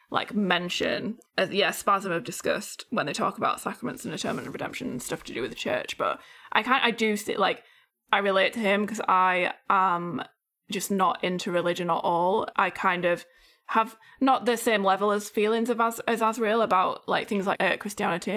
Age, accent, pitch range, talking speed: 20-39, British, 175-210 Hz, 210 wpm